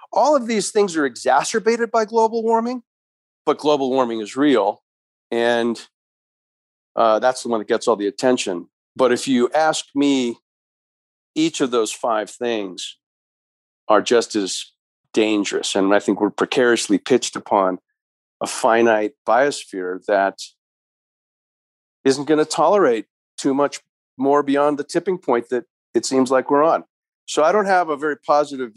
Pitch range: 120-150 Hz